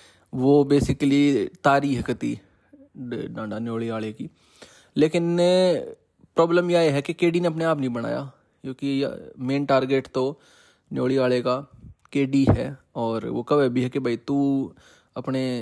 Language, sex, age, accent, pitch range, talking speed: Hindi, male, 20-39, native, 120-145 Hz, 145 wpm